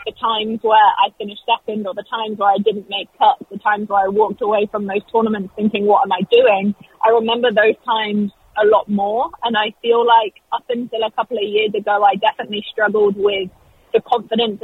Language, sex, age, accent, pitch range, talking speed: English, female, 20-39, British, 210-240 Hz, 215 wpm